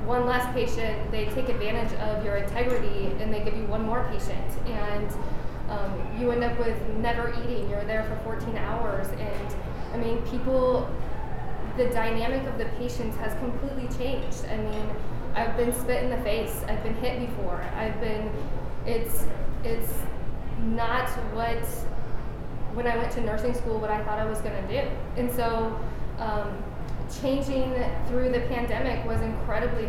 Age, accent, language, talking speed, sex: 10-29, American, English, 165 wpm, female